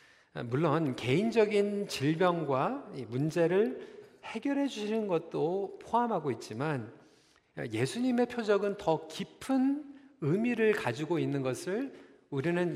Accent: native